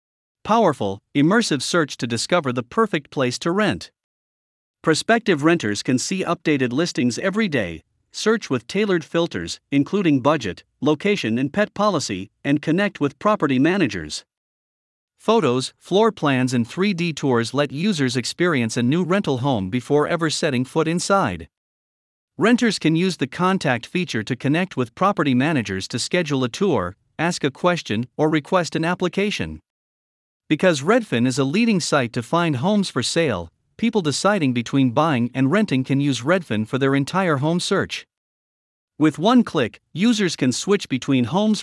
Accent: American